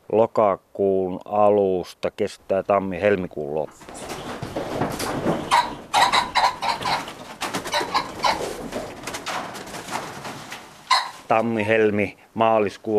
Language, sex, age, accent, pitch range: Finnish, male, 30-49, native, 100-120 Hz